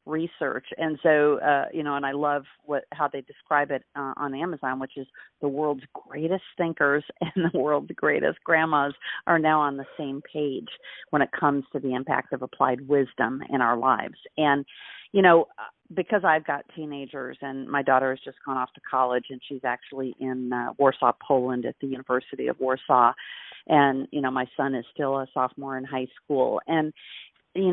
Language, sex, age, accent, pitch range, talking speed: English, female, 40-59, American, 135-165 Hz, 190 wpm